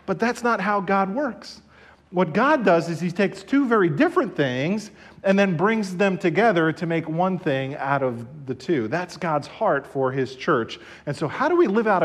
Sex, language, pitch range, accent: male, English, 130-185 Hz, American